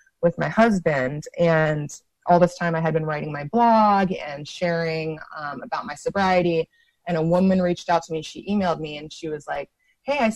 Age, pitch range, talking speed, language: 20-39, 155-185 Hz, 205 wpm, English